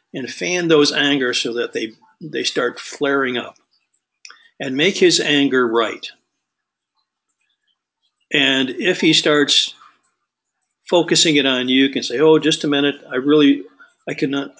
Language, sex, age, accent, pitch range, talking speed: English, male, 50-69, American, 125-155 Hz, 145 wpm